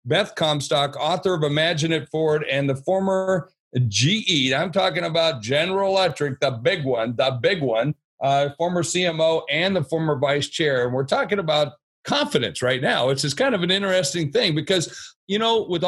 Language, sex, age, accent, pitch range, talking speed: English, male, 50-69, American, 145-180 Hz, 180 wpm